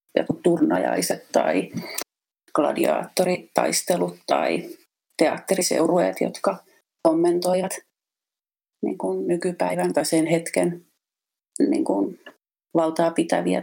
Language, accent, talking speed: Finnish, native, 65 wpm